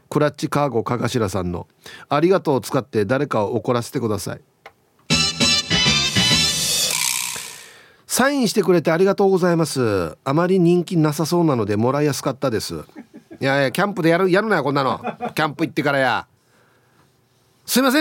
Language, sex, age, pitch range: Japanese, male, 40-59, 135-225 Hz